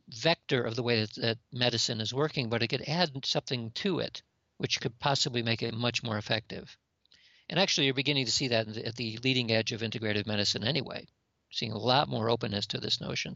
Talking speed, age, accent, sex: 210 wpm, 50-69, American, male